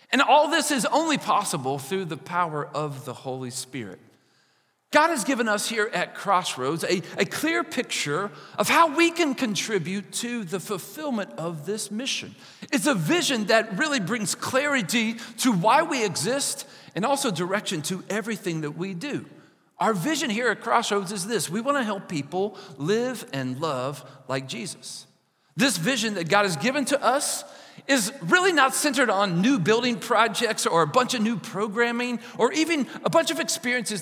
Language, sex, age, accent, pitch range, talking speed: English, male, 40-59, American, 180-275 Hz, 175 wpm